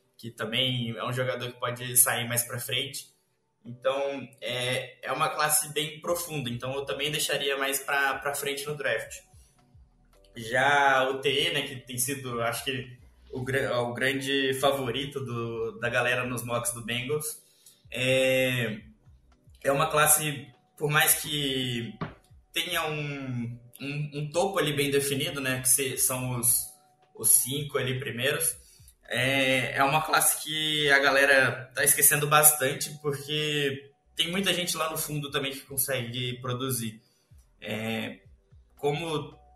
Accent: Brazilian